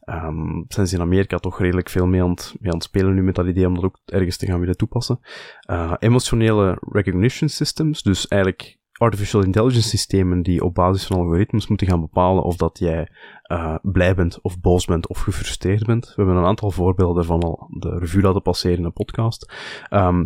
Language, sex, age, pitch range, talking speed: Dutch, male, 20-39, 90-105 Hz, 210 wpm